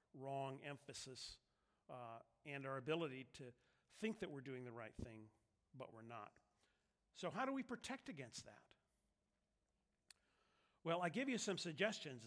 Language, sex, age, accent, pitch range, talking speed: English, male, 50-69, American, 125-165 Hz, 145 wpm